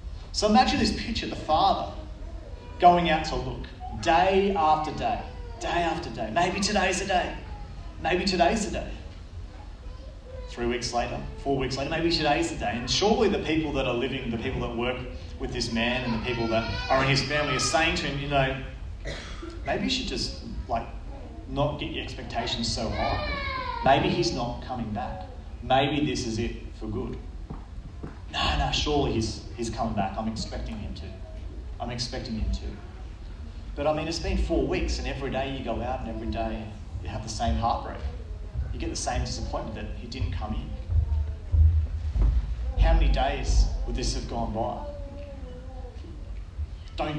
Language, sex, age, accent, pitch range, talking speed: English, male, 30-49, Australian, 80-125 Hz, 175 wpm